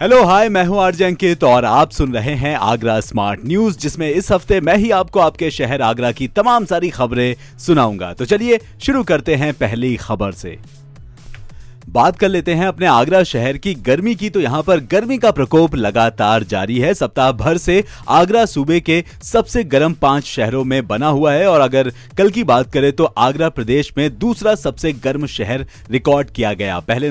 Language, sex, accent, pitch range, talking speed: Hindi, male, native, 120-170 Hz, 190 wpm